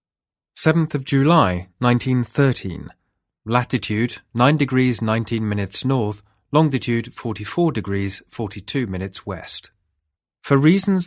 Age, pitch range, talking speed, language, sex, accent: 30-49, 105-145 Hz, 110 wpm, English, male, British